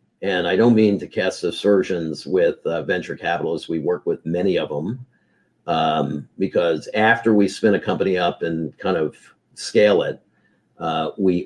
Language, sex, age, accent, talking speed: English, male, 50-69, American, 170 wpm